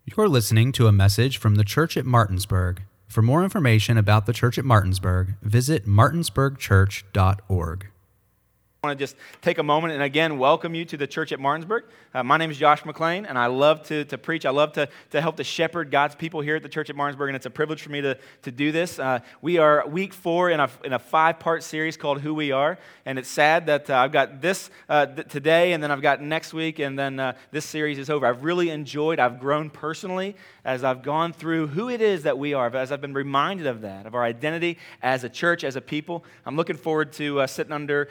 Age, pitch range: 30-49, 130-160 Hz